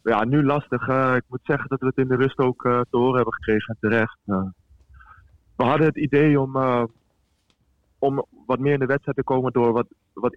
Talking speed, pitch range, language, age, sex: 220 wpm, 110-130 Hz, Dutch, 20-39, male